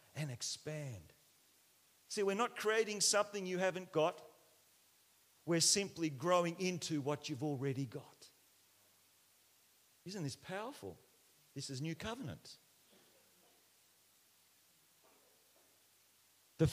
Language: English